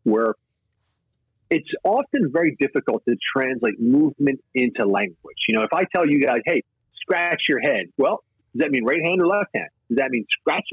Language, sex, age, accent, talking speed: English, male, 40-59, American, 190 wpm